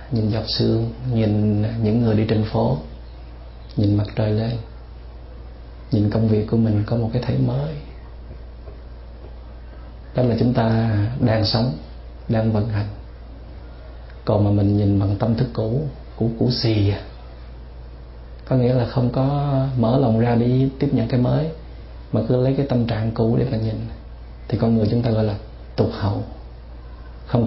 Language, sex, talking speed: Vietnamese, male, 165 wpm